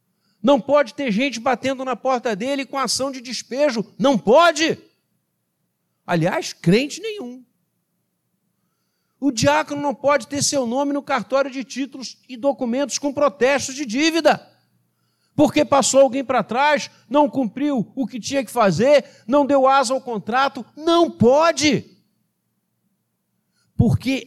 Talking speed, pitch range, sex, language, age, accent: 135 wpm, 230-285 Hz, male, Portuguese, 50-69, Brazilian